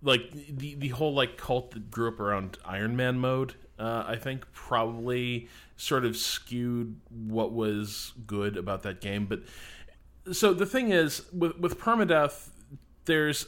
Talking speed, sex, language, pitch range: 155 wpm, male, English, 100-125 Hz